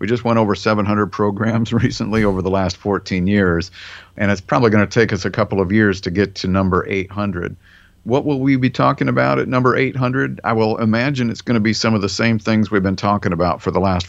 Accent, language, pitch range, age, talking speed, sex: American, English, 90-105 Hz, 50-69, 240 wpm, male